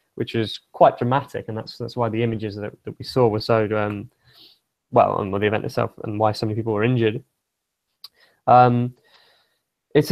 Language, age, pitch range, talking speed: English, 20-39, 110-135 Hz, 190 wpm